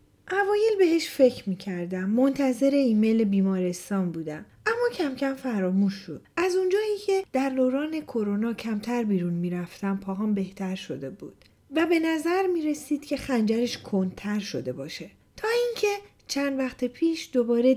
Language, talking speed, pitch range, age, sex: Persian, 140 wpm, 195-305 Hz, 40-59, female